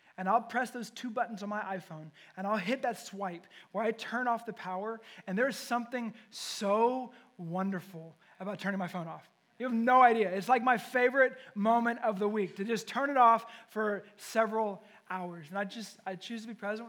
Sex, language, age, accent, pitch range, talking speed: male, English, 20-39, American, 190-235 Hz, 205 wpm